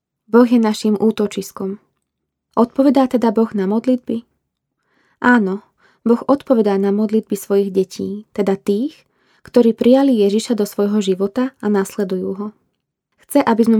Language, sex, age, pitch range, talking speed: Slovak, female, 20-39, 200-235 Hz, 130 wpm